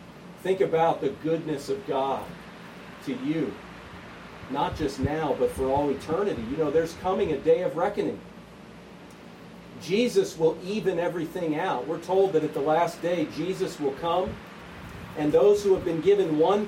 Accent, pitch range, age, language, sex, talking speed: American, 165-250 Hz, 40-59, English, male, 160 wpm